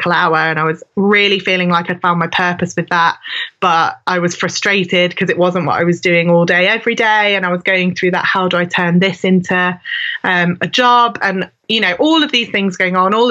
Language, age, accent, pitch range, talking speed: English, 20-39, British, 175-190 Hz, 245 wpm